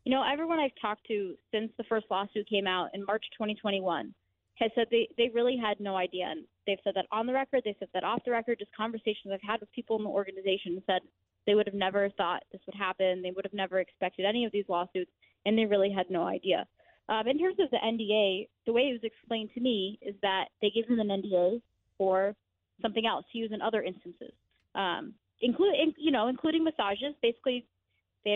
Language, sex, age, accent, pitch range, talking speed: English, female, 20-39, American, 190-230 Hz, 220 wpm